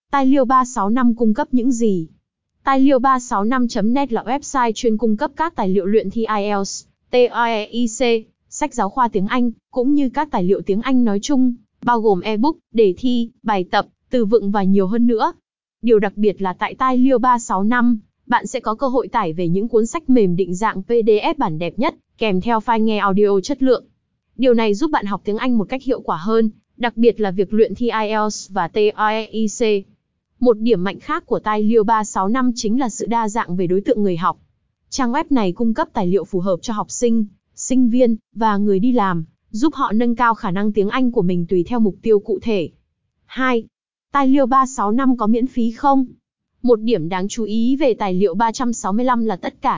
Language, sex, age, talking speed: Vietnamese, female, 20-39, 210 wpm